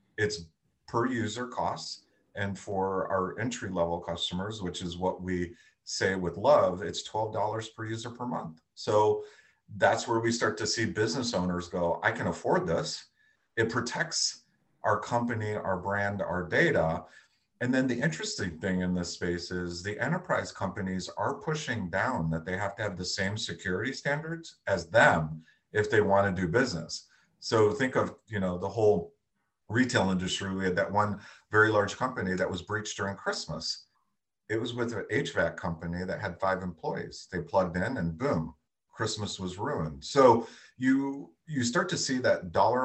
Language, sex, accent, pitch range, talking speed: English, male, American, 90-120 Hz, 170 wpm